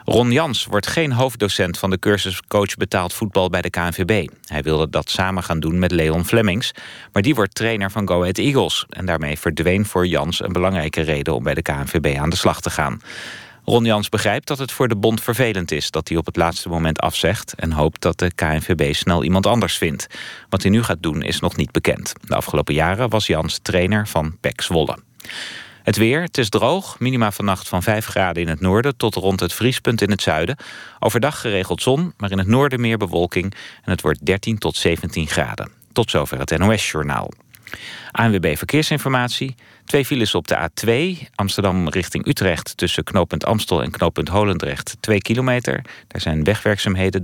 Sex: male